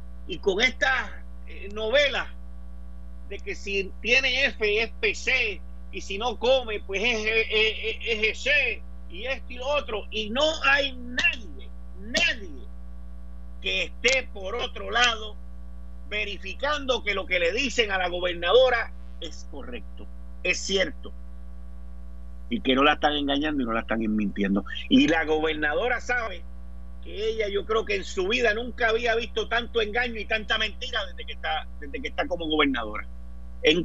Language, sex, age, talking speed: Spanish, male, 50-69, 155 wpm